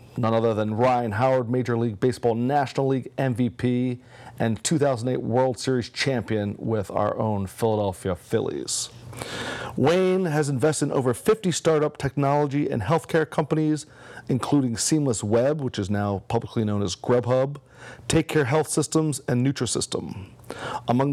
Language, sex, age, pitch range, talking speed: English, male, 40-59, 120-145 Hz, 140 wpm